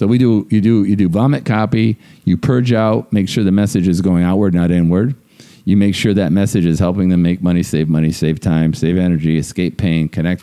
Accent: American